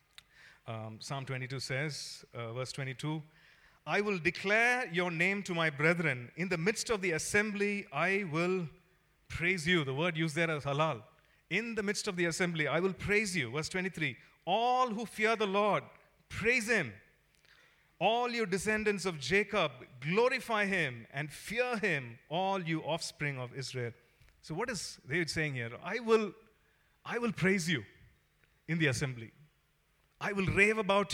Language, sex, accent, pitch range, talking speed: English, male, Indian, 145-205 Hz, 160 wpm